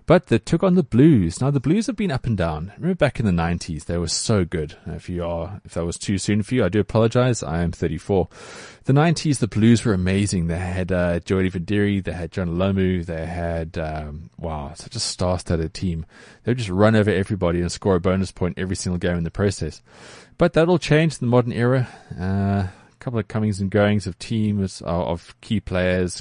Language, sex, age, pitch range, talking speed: English, male, 20-39, 85-115 Hz, 230 wpm